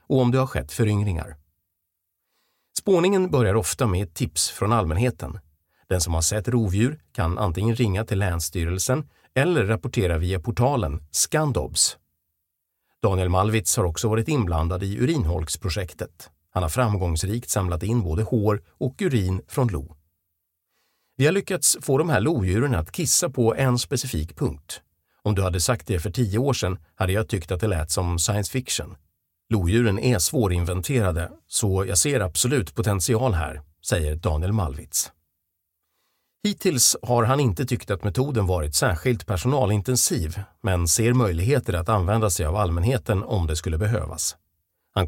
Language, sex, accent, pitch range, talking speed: Swedish, male, native, 85-120 Hz, 150 wpm